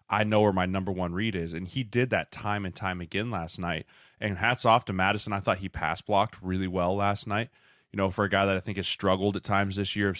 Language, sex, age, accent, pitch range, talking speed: English, male, 20-39, American, 95-110 Hz, 275 wpm